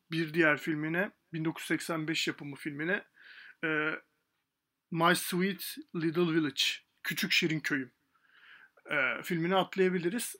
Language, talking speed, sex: Turkish, 85 wpm, male